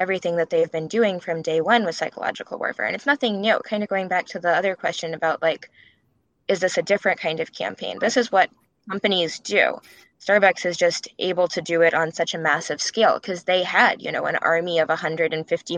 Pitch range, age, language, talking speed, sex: 165-195 Hz, 10-29, English, 220 wpm, female